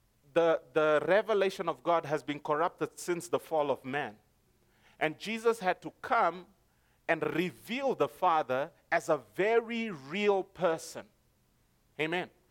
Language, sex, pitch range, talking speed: English, male, 145-215 Hz, 135 wpm